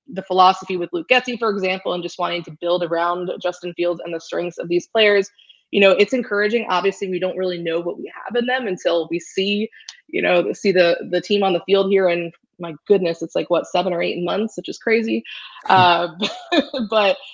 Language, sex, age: English, female, 20-39